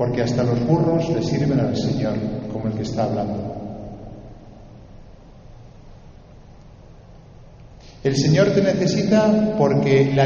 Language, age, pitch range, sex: Spanish, 50-69, 140-200 Hz, male